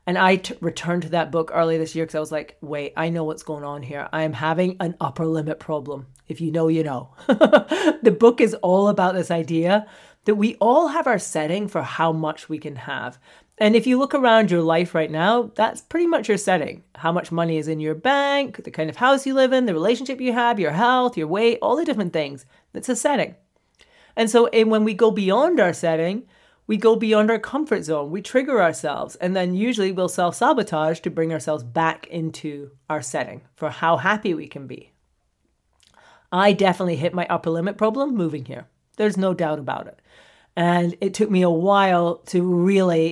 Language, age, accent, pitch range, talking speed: English, 30-49, American, 160-215 Hz, 215 wpm